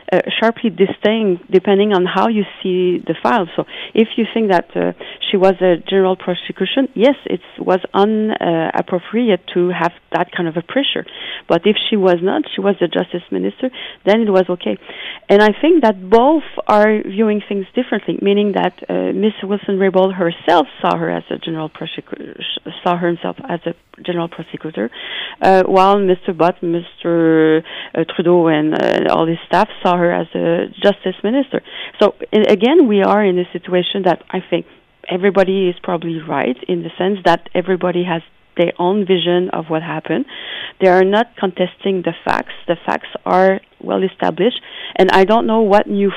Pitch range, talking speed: 175-205 Hz, 175 wpm